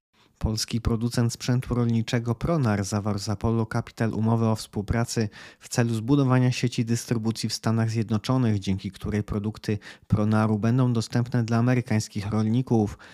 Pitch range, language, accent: 110-120 Hz, Polish, native